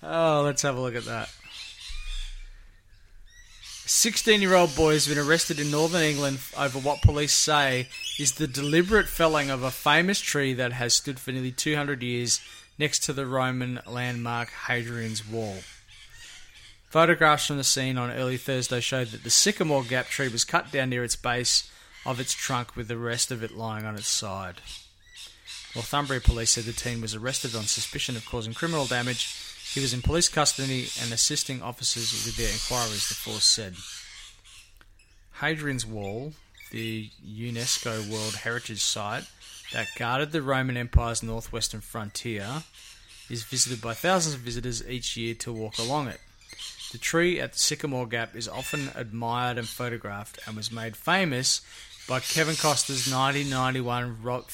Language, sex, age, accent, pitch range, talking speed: English, male, 20-39, Australian, 115-140 Hz, 160 wpm